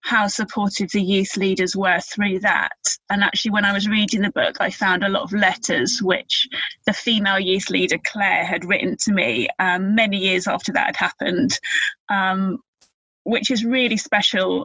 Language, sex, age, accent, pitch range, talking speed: English, female, 20-39, British, 190-215 Hz, 180 wpm